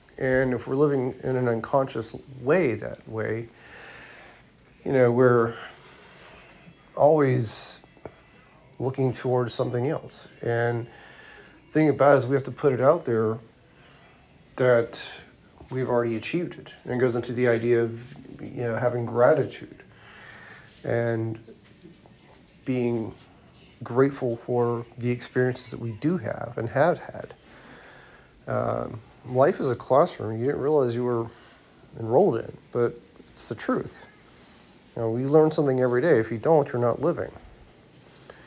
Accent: American